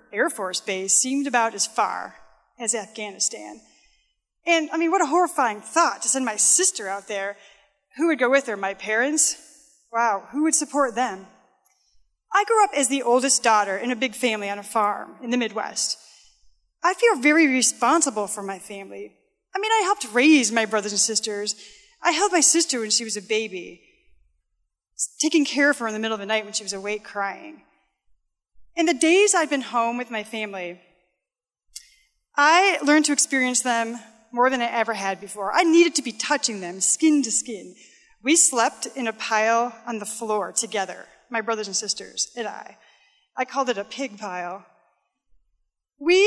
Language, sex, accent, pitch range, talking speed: English, female, American, 210-300 Hz, 185 wpm